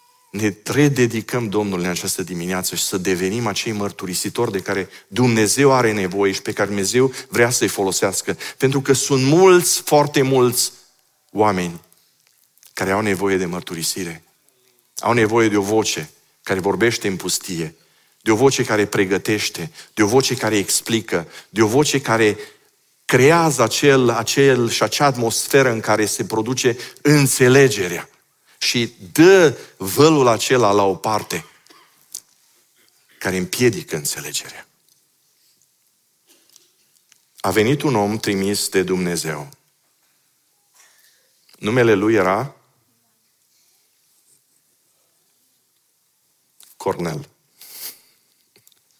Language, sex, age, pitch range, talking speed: Romanian, male, 40-59, 95-125 Hz, 110 wpm